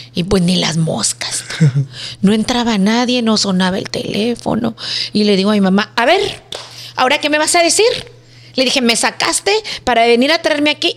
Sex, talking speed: female, 195 wpm